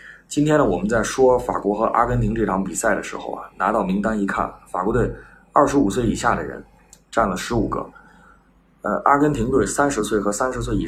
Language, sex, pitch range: Chinese, male, 105-135 Hz